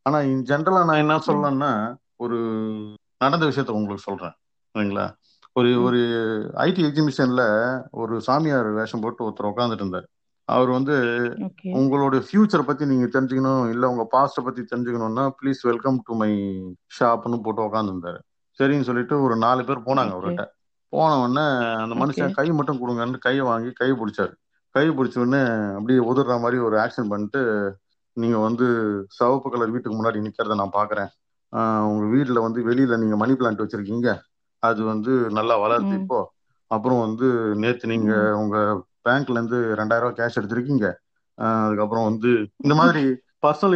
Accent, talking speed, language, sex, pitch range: native, 150 wpm, Tamil, male, 110-135 Hz